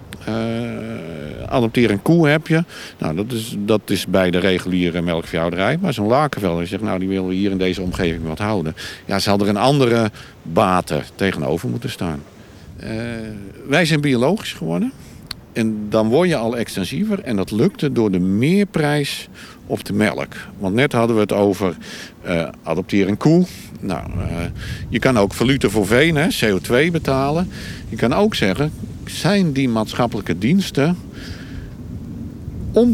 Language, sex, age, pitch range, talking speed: Dutch, male, 50-69, 100-150 Hz, 160 wpm